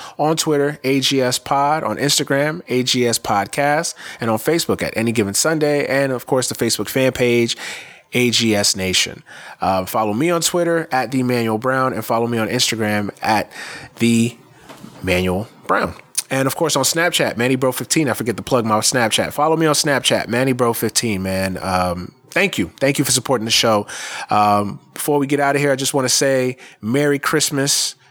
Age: 30-49